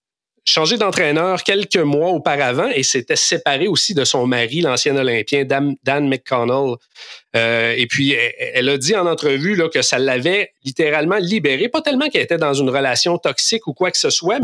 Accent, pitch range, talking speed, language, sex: Canadian, 120-165 Hz, 180 wpm, French, male